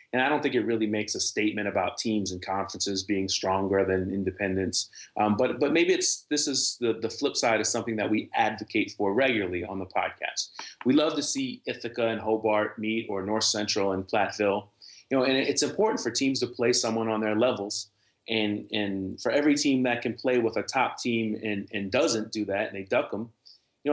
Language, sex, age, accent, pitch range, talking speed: English, male, 30-49, American, 105-125 Hz, 215 wpm